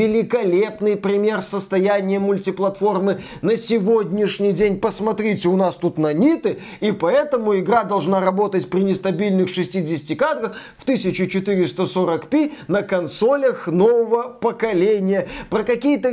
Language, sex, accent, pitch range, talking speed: Russian, male, native, 190-235 Hz, 110 wpm